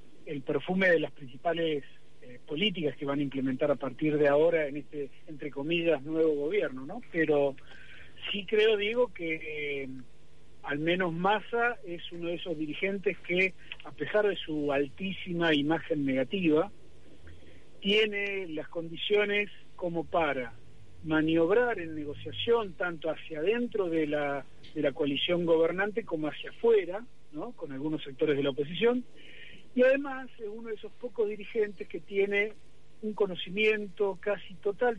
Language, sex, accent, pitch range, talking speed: Spanish, male, Argentinian, 145-200 Hz, 145 wpm